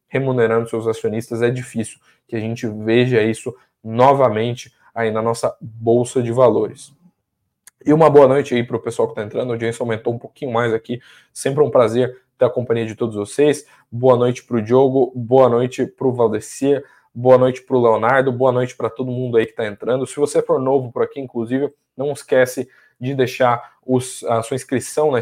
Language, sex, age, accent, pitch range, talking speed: Portuguese, male, 10-29, Brazilian, 115-140 Hz, 200 wpm